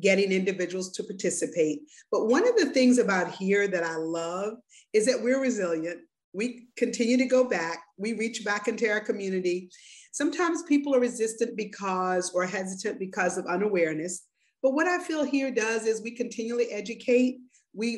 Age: 40-59